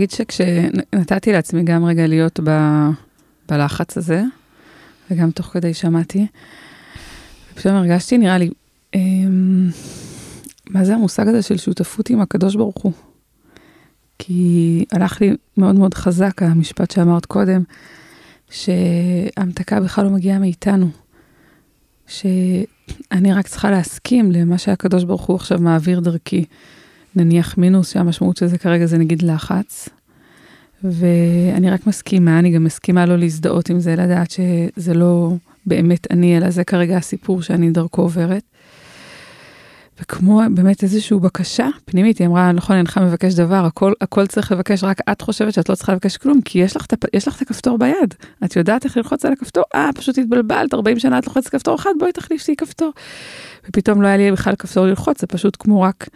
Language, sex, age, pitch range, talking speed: Hebrew, female, 20-39, 175-205 Hz, 145 wpm